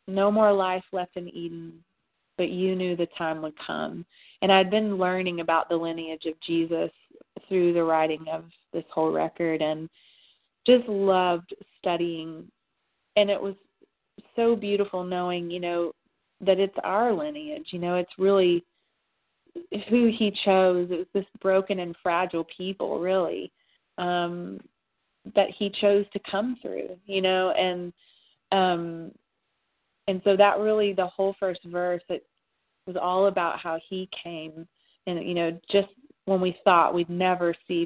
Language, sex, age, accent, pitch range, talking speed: English, female, 30-49, American, 165-195 Hz, 150 wpm